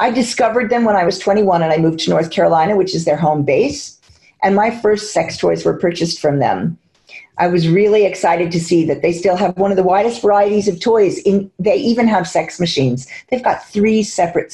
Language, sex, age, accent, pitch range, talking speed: English, female, 50-69, American, 165-225 Hz, 225 wpm